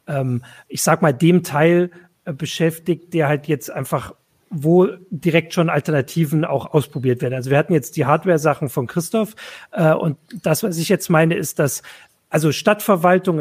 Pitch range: 150-180 Hz